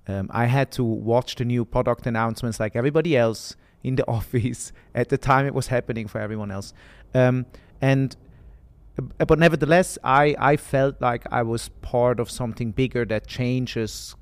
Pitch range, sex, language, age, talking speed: 105-130 Hz, male, German, 30-49, 175 wpm